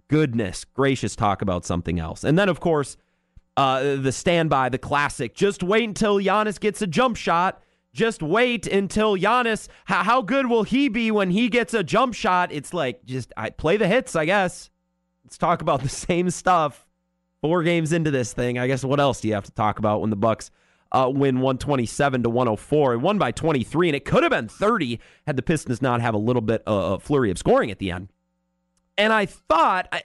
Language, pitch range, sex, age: English, 110-170 Hz, male, 30-49